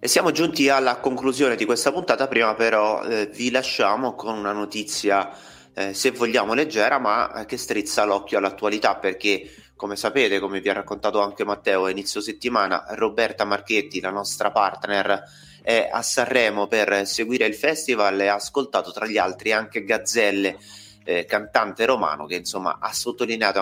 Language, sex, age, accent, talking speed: Italian, male, 30-49, native, 165 wpm